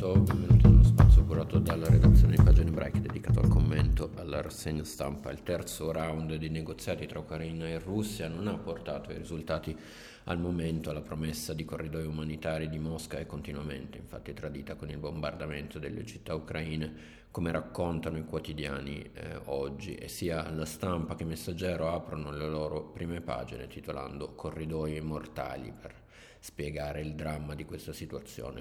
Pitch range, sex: 75-85 Hz, male